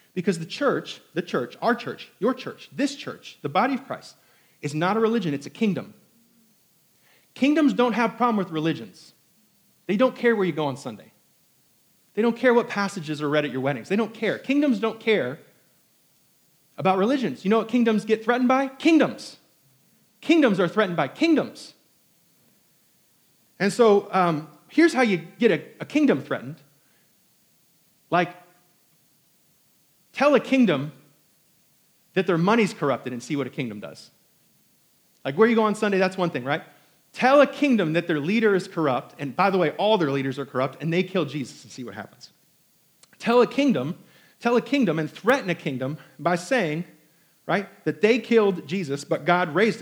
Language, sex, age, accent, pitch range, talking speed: English, male, 40-59, American, 160-230 Hz, 180 wpm